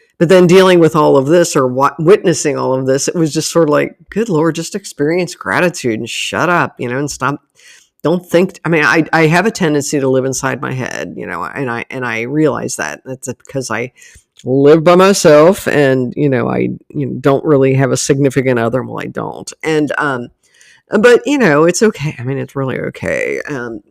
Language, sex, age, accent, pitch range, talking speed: English, female, 50-69, American, 130-175 Hz, 220 wpm